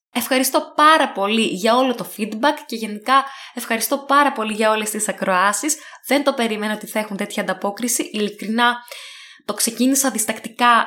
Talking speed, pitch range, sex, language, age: 155 wpm, 225-275 Hz, female, Greek, 20-39